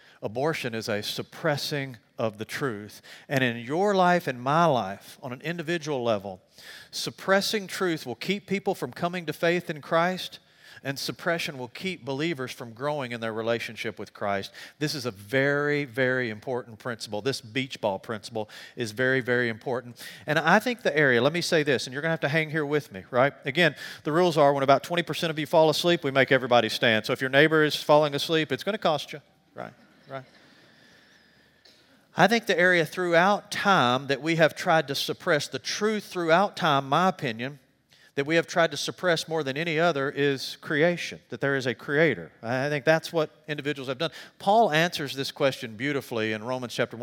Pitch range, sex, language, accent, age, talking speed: 125-165 Hz, male, English, American, 40-59, 195 wpm